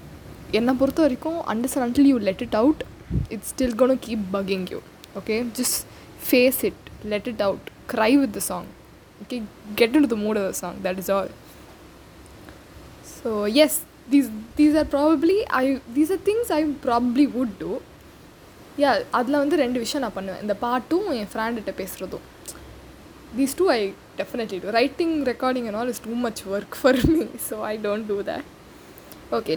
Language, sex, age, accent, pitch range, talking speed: Tamil, female, 10-29, native, 215-285 Hz, 180 wpm